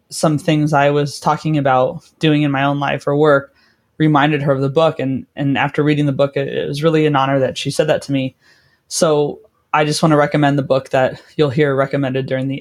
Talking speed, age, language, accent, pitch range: 240 wpm, 20-39, English, American, 145-175 Hz